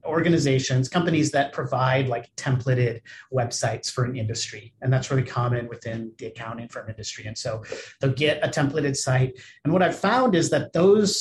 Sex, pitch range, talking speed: male, 125-150 Hz, 175 wpm